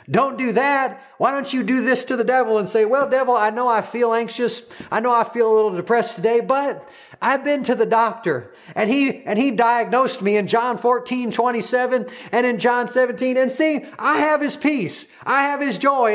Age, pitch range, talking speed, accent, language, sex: 40-59, 205-260 Hz, 215 wpm, American, English, male